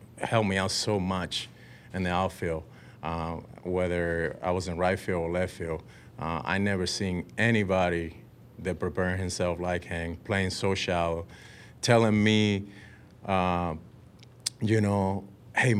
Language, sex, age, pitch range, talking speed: English, male, 30-49, 90-105 Hz, 145 wpm